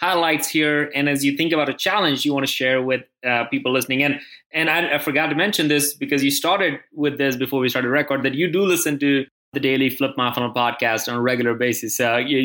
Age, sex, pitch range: 20-39, male, 135-155 Hz